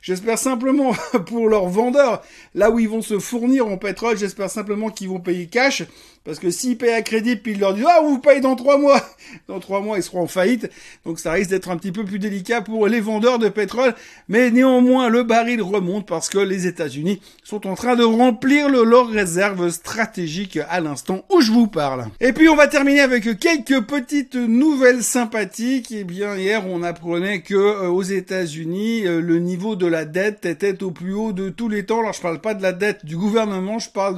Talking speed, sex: 225 wpm, male